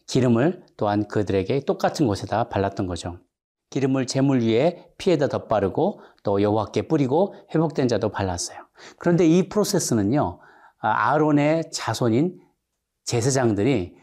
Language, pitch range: Korean, 115-170 Hz